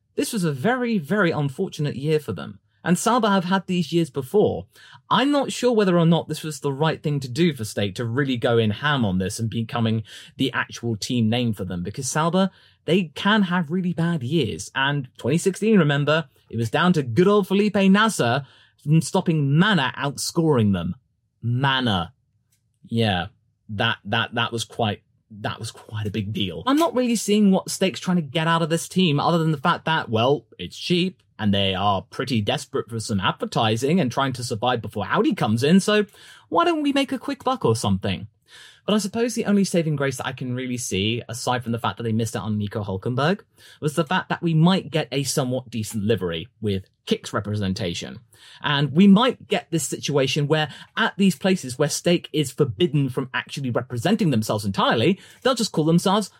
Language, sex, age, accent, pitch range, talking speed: English, male, 30-49, British, 115-185 Hz, 200 wpm